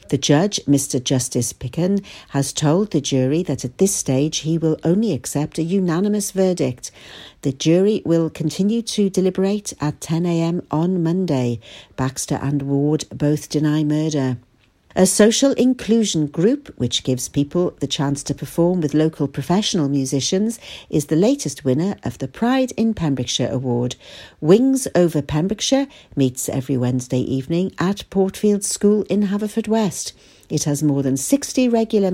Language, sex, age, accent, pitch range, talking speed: English, female, 60-79, British, 140-195 Hz, 150 wpm